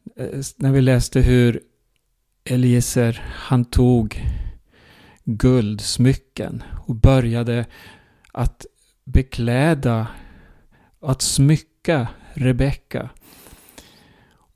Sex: male